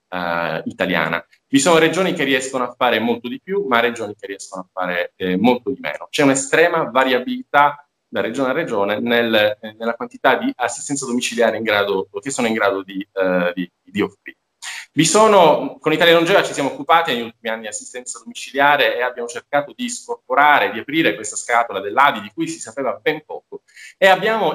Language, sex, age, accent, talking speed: Italian, male, 20-39, native, 190 wpm